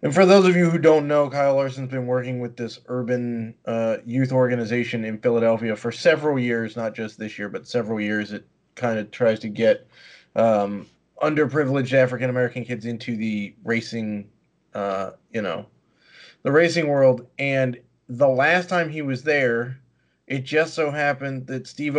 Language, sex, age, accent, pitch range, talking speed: English, male, 30-49, American, 110-145 Hz, 170 wpm